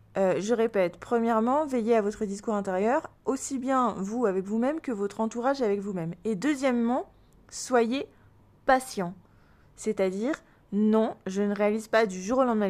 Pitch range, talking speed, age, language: 200-255 Hz, 155 wpm, 20-39, French